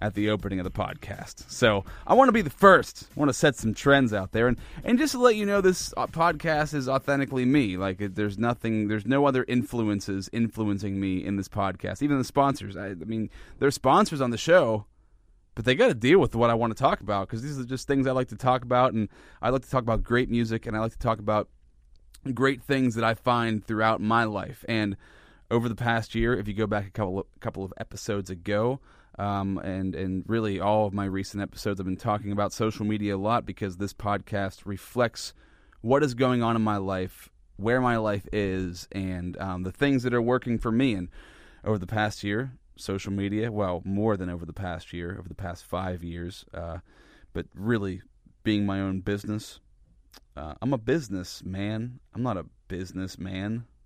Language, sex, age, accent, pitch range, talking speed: English, male, 30-49, American, 95-120 Hz, 215 wpm